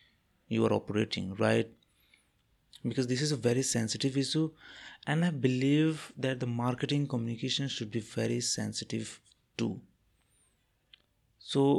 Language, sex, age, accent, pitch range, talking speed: English, male, 30-49, Indian, 115-140 Hz, 120 wpm